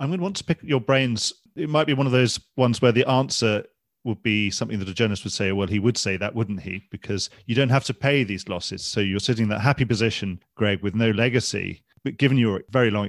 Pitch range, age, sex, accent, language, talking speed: 100-125 Hz, 40-59, male, British, English, 260 wpm